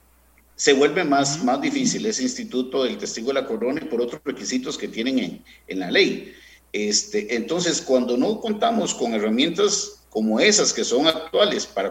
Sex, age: male, 50-69